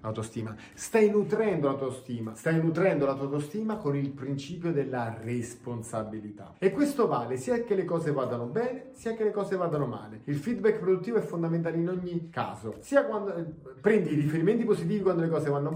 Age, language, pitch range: 30-49, Italian, 135-190 Hz